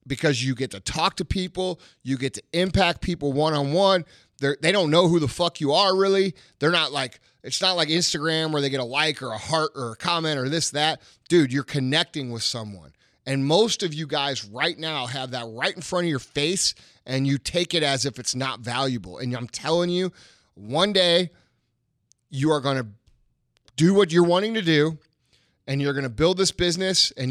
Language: English